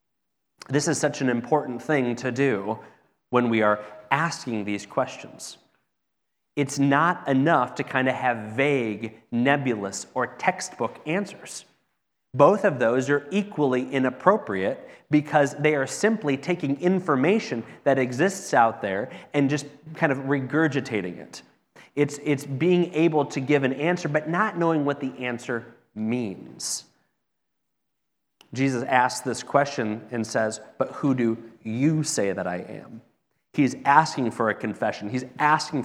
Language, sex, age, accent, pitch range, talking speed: English, male, 30-49, American, 110-145 Hz, 140 wpm